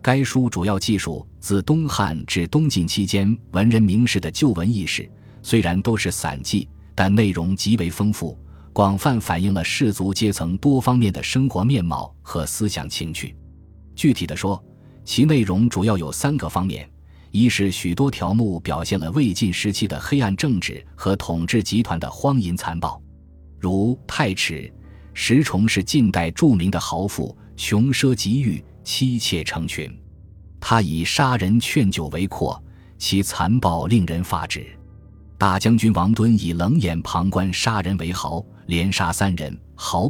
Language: Chinese